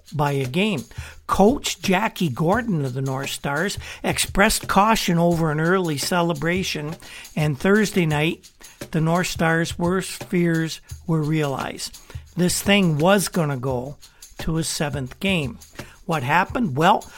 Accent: American